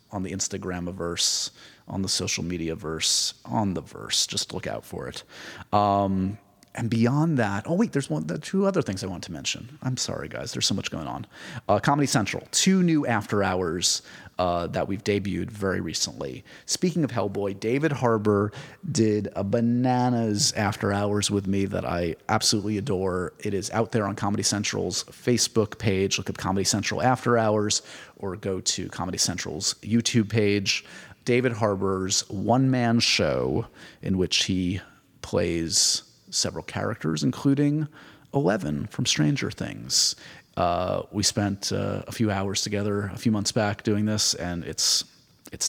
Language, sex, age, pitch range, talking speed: English, male, 30-49, 95-125 Hz, 165 wpm